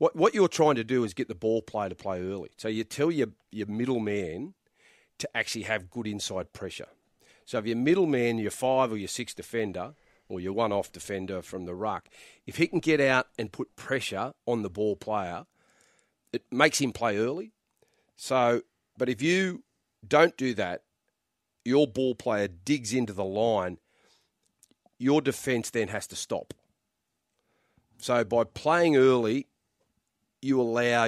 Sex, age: male, 40-59